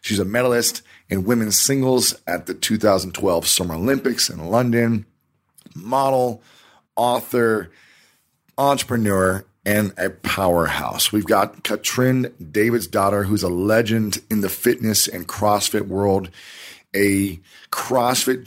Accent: American